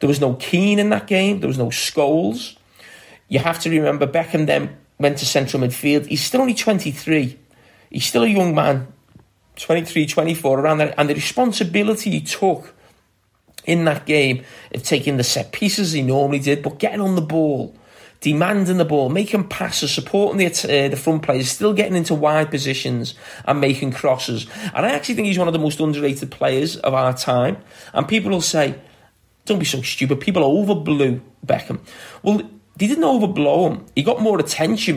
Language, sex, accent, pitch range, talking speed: English, male, British, 130-185 Hz, 185 wpm